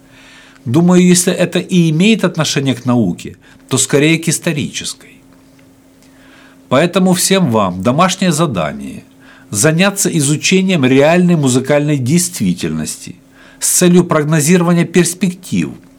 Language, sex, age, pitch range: Russian, male, 60-79, 130-180 Hz